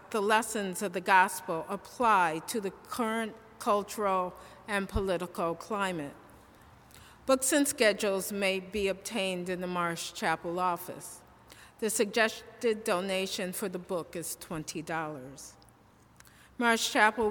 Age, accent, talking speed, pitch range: 50-69, American, 120 wpm, 185-225 Hz